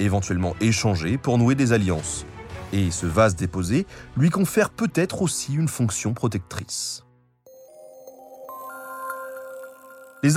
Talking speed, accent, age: 105 wpm, French, 30-49